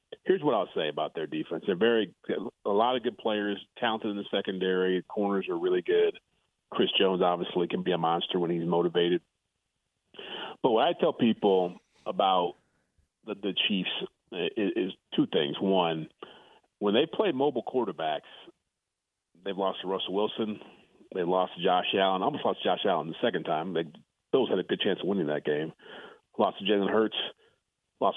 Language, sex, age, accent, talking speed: English, male, 40-59, American, 185 wpm